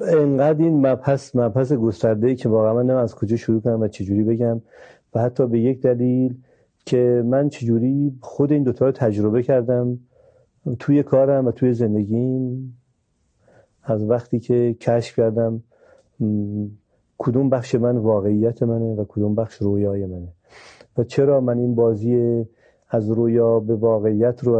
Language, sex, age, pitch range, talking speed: Persian, male, 40-59, 110-125 Hz, 145 wpm